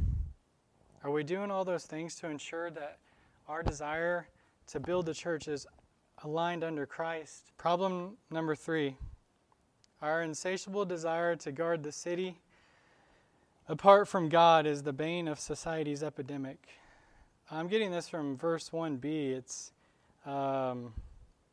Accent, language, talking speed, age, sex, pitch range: American, English, 130 wpm, 20-39, male, 145-170 Hz